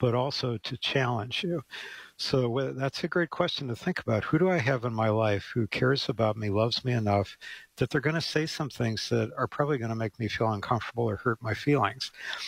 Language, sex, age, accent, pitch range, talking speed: English, male, 60-79, American, 110-130 Hz, 225 wpm